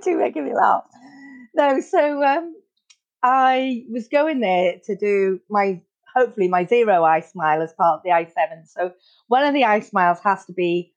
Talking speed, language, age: 175 wpm, English, 40-59